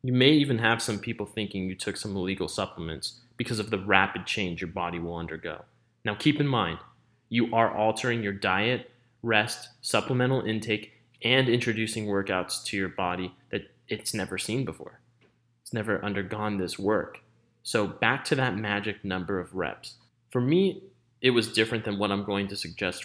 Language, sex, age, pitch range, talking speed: English, male, 30-49, 100-120 Hz, 175 wpm